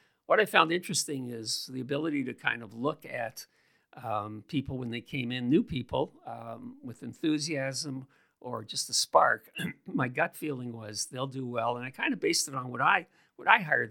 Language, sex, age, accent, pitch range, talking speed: English, male, 50-69, American, 115-145 Hz, 200 wpm